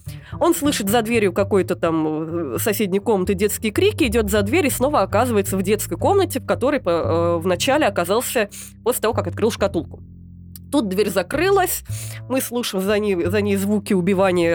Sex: female